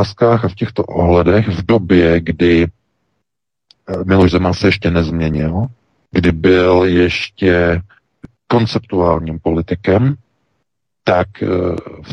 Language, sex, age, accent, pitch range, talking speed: Czech, male, 40-59, native, 80-95 Hz, 95 wpm